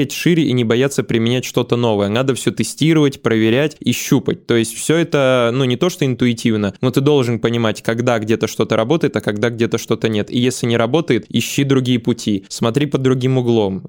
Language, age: Russian, 20-39